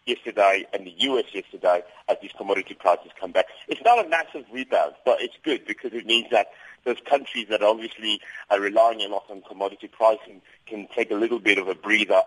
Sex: male